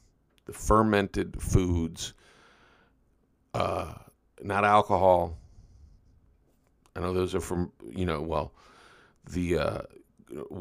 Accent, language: American, English